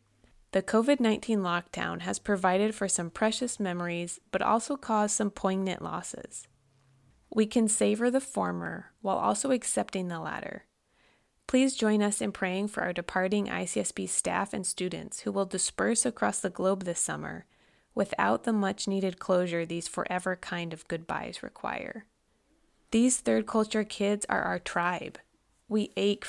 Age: 20-39